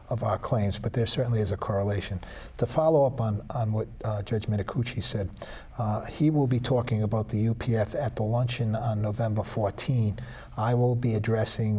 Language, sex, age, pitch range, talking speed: English, male, 40-59, 105-120 Hz, 190 wpm